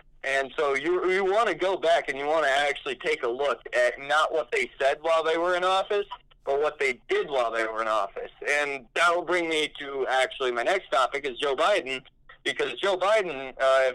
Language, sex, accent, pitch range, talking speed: English, male, American, 140-190 Hz, 220 wpm